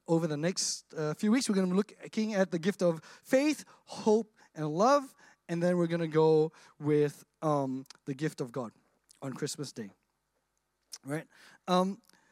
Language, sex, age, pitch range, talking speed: English, male, 20-39, 190-280 Hz, 175 wpm